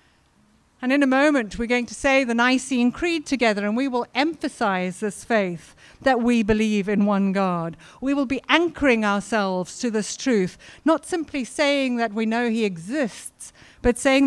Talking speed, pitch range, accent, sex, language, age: 175 wpm, 205-260 Hz, British, female, English, 60-79